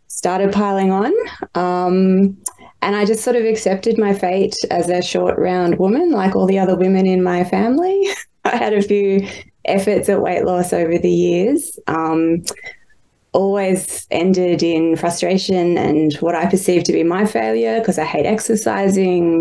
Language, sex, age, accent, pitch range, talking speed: English, female, 20-39, Australian, 170-200 Hz, 165 wpm